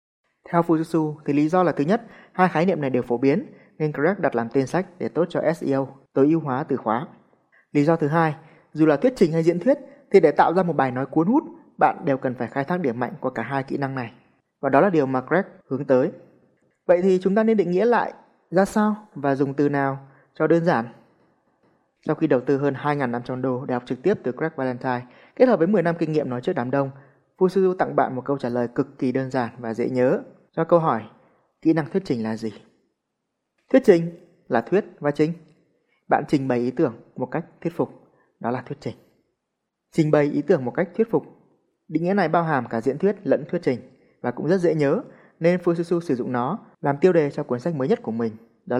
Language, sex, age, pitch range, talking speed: Vietnamese, male, 20-39, 130-175 Hz, 240 wpm